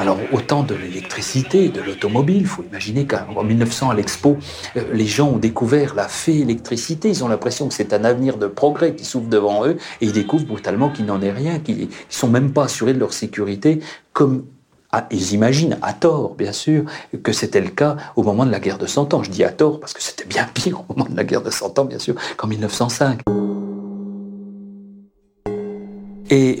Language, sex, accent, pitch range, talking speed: French, male, French, 105-140 Hz, 205 wpm